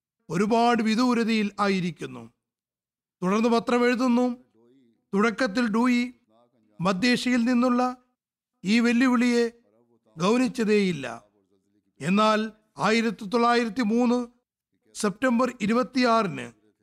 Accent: native